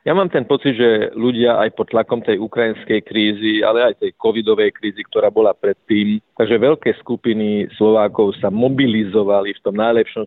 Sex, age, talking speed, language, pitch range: male, 40-59, 170 wpm, Slovak, 110-120 Hz